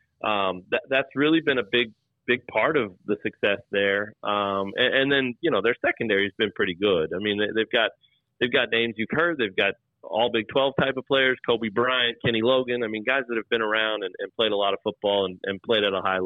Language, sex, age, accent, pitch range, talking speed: English, male, 30-49, American, 100-125 Hz, 240 wpm